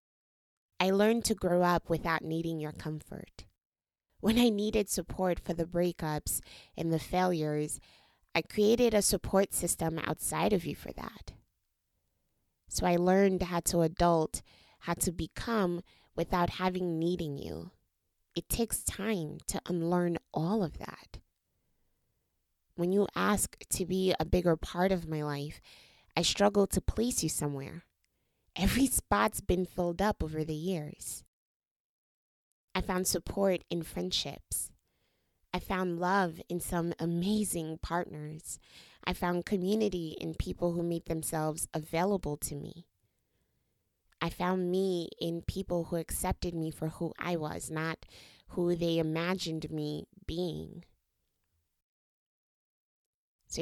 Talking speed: 130 wpm